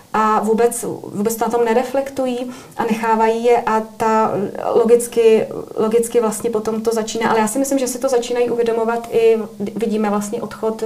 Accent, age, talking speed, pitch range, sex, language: native, 30-49, 165 wpm, 195-225 Hz, female, Czech